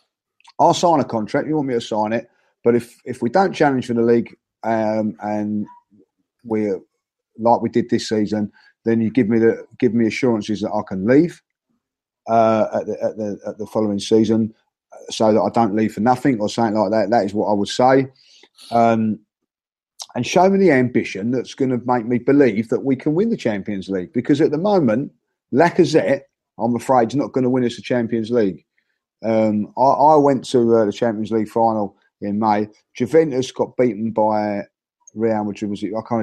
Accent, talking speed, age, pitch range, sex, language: British, 200 wpm, 30-49, 105-135 Hz, male, English